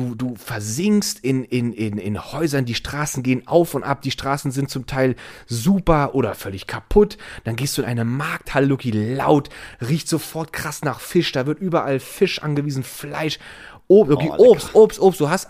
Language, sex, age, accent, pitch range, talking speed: German, male, 30-49, German, 130-165 Hz, 180 wpm